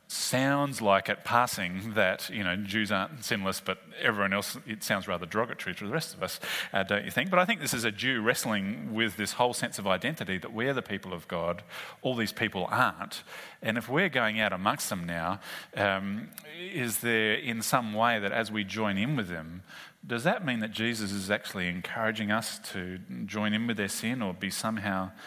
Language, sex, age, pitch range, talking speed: English, male, 30-49, 100-125 Hz, 210 wpm